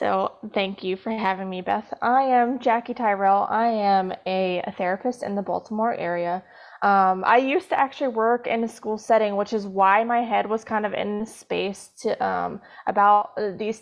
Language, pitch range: English, 195-245 Hz